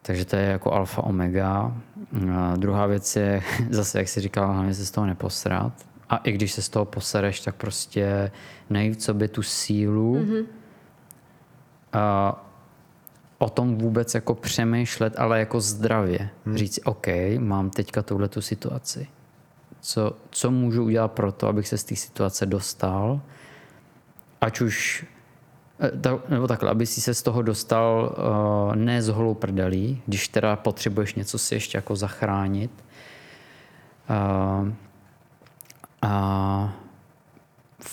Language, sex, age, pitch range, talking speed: Czech, male, 20-39, 100-120 Hz, 135 wpm